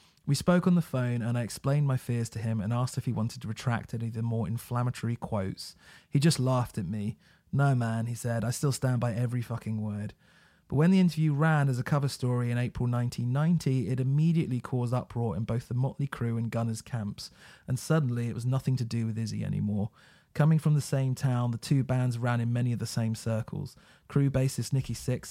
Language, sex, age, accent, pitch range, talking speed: English, male, 30-49, British, 115-130 Hz, 225 wpm